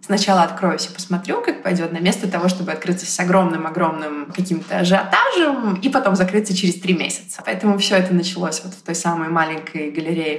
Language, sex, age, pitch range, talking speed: Russian, female, 20-39, 170-205 Hz, 180 wpm